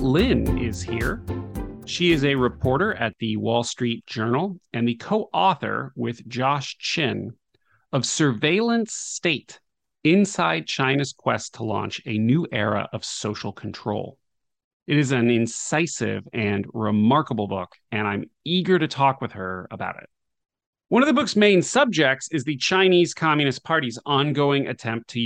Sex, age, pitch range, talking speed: male, 30-49, 110-155 Hz, 145 wpm